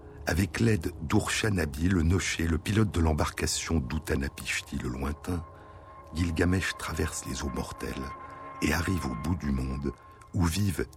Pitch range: 75-105 Hz